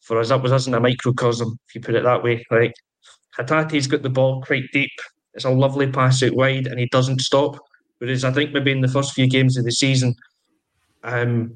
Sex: male